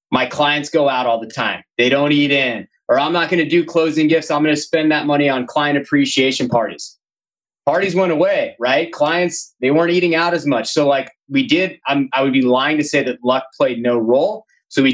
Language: English